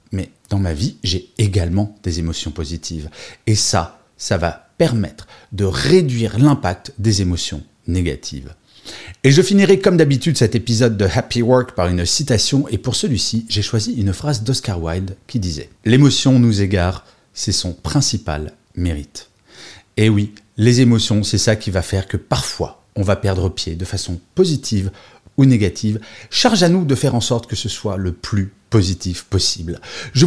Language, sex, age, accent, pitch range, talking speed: French, male, 30-49, French, 95-135 Hz, 170 wpm